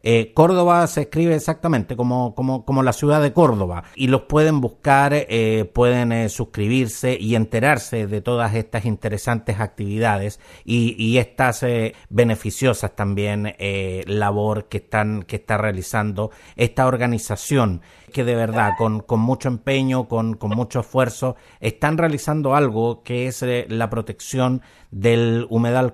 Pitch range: 110-135 Hz